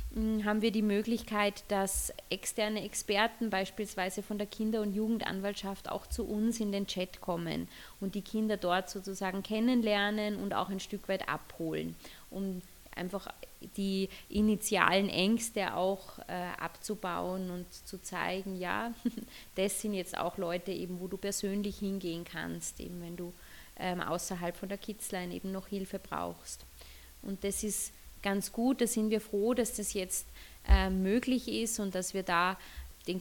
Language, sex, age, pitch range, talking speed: German, female, 20-39, 185-210 Hz, 155 wpm